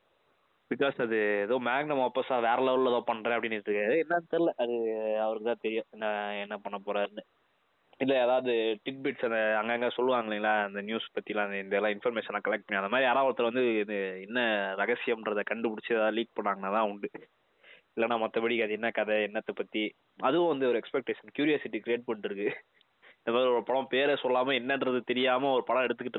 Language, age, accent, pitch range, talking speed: Tamil, 20-39, native, 105-125 Hz, 165 wpm